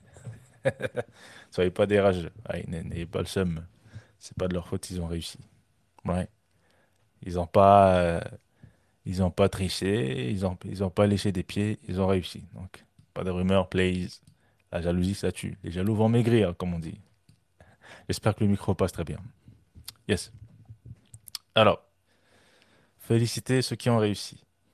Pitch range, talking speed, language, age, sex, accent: 90-110 Hz, 155 wpm, French, 20-39, male, French